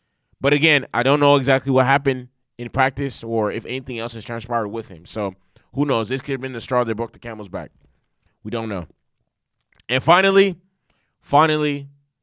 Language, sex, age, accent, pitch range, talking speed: English, male, 20-39, American, 115-145 Hz, 185 wpm